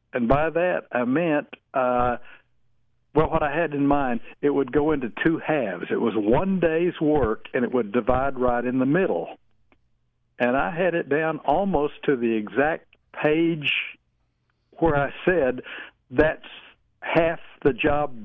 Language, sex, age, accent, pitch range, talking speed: English, male, 60-79, American, 125-165 Hz, 160 wpm